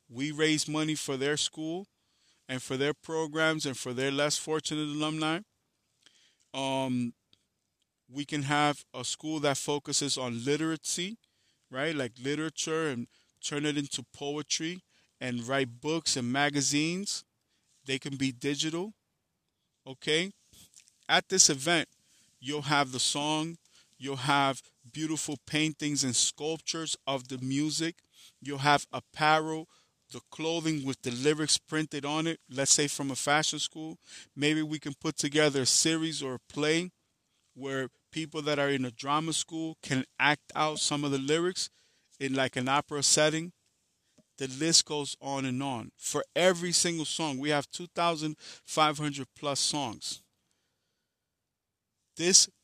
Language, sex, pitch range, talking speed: English, male, 135-155 Hz, 140 wpm